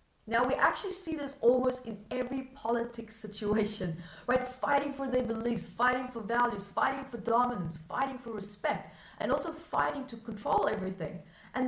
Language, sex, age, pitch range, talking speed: English, female, 30-49, 200-270 Hz, 160 wpm